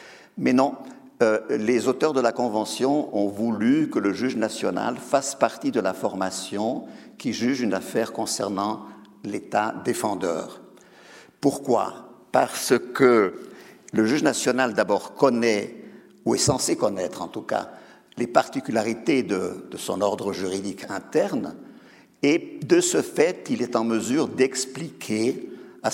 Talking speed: 135 wpm